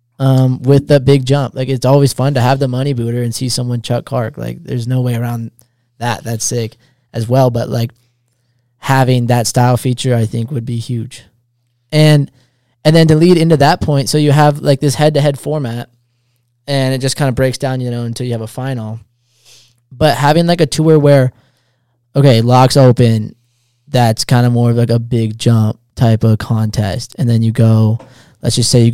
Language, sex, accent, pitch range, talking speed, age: English, male, American, 120-140 Hz, 200 wpm, 20-39